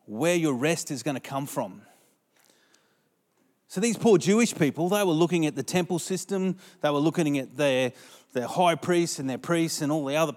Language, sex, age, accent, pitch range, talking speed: English, male, 30-49, Australian, 145-175 Hz, 205 wpm